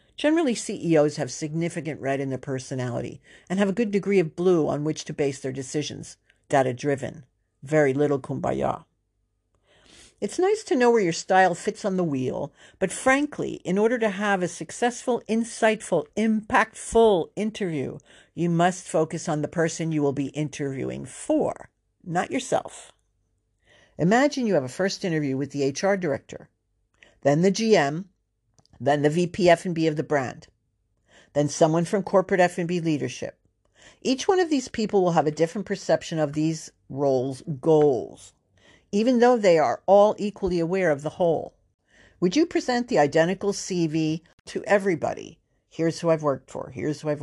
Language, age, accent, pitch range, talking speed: English, 60-79, American, 145-200 Hz, 160 wpm